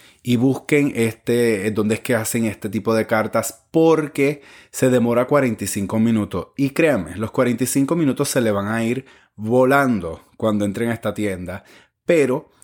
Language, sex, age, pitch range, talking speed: Spanish, male, 30-49, 115-145 Hz, 150 wpm